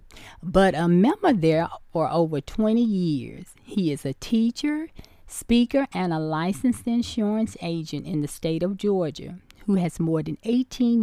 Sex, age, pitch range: female, 40-59, 150-200 Hz